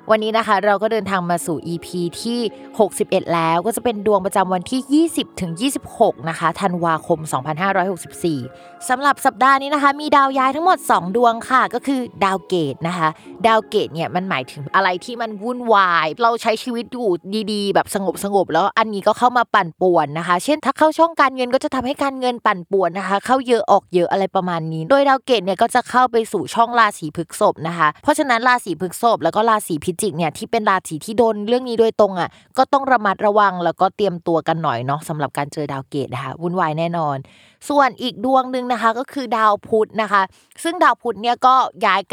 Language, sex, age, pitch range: Thai, female, 20-39, 170-240 Hz